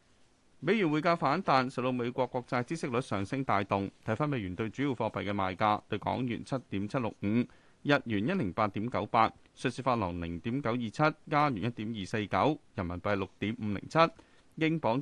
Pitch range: 100-140 Hz